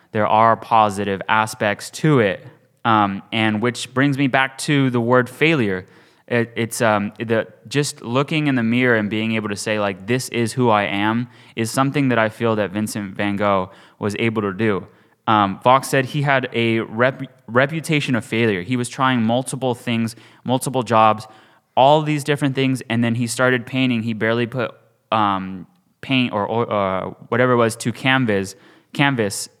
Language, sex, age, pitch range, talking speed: English, male, 20-39, 105-125 Hz, 180 wpm